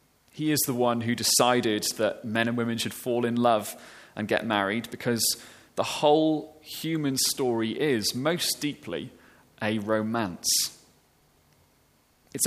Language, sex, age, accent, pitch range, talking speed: English, male, 30-49, British, 110-135 Hz, 135 wpm